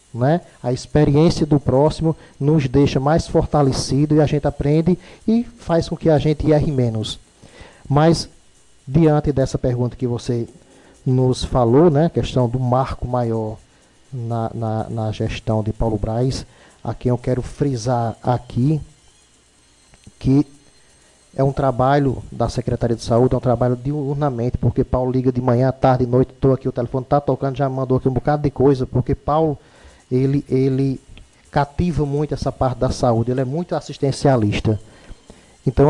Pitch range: 125-145 Hz